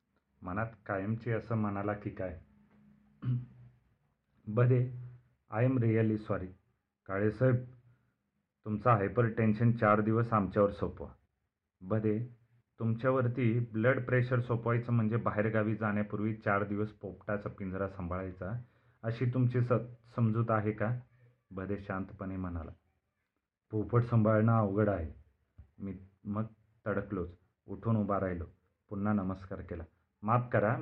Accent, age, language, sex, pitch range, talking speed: native, 30-49, Marathi, male, 100-120 Hz, 110 wpm